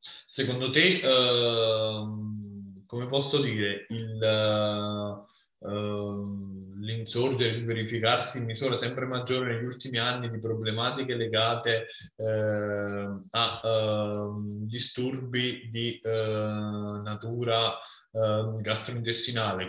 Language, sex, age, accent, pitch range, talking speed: Italian, male, 20-39, native, 105-115 Hz, 70 wpm